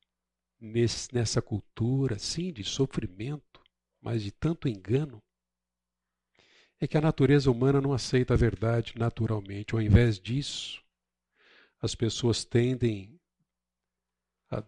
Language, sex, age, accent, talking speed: Portuguese, male, 50-69, Brazilian, 105 wpm